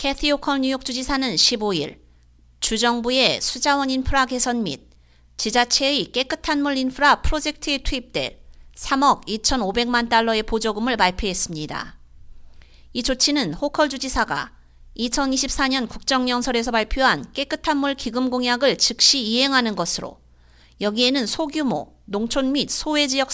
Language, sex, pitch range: Korean, female, 200-275 Hz